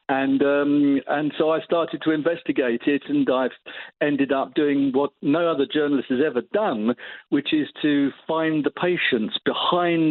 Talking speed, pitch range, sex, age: 165 wpm, 125-155 Hz, male, 50-69